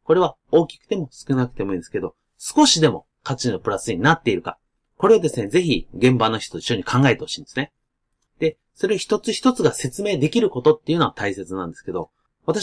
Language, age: Japanese, 30-49